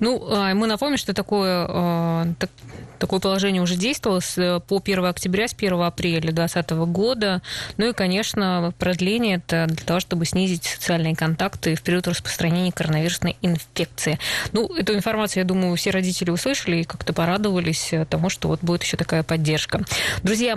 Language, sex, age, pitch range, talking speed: Russian, female, 20-39, 175-205 Hz, 155 wpm